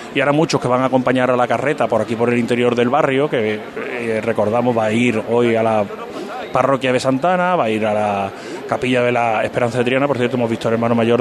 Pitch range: 120-140 Hz